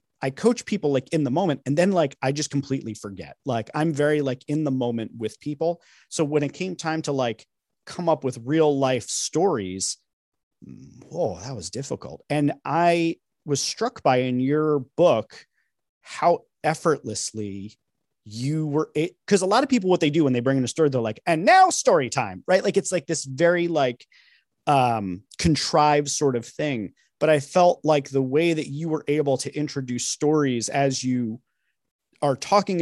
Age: 30-49